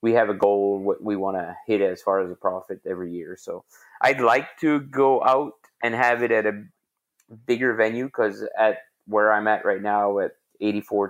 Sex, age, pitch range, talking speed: male, 20-39, 95-110 Hz, 205 wpm